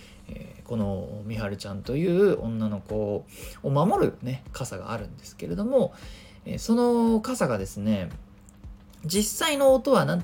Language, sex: Japanese, male